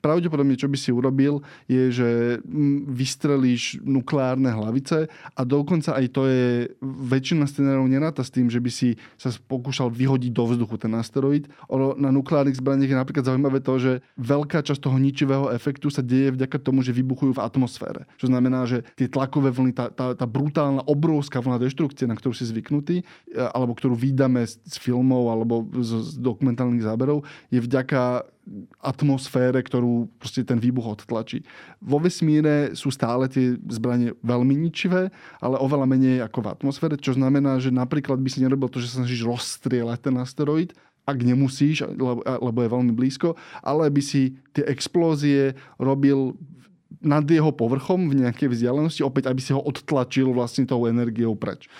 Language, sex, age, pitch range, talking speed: Slovak, male, 20-39, 125-140 Hz, 165 wpm